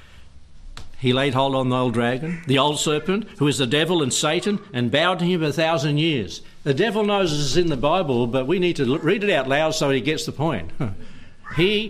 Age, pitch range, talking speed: 60-79, 120-170 Hz, 225 wpm